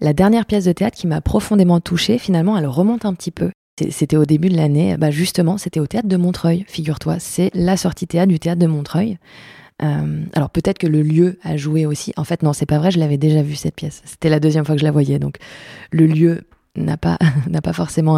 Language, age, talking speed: French, 20-39, 240 wpm